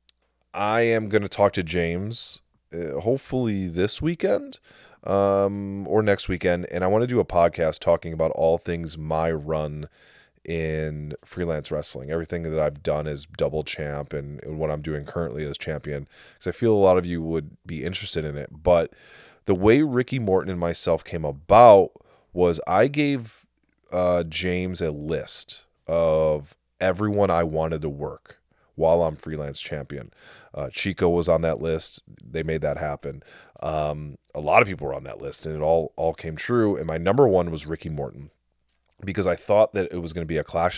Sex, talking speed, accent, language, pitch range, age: male, 185 wpm, American, English, 75-95 Hz, 30-49